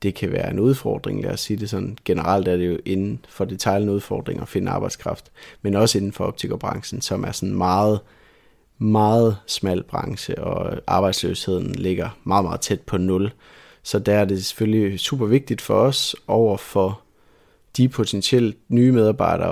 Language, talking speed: Danish, 175 wpm